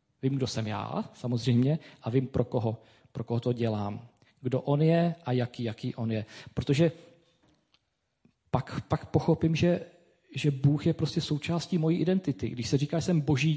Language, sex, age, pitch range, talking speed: Czech, male, 40-59, 120-160 Hz, 175 wpm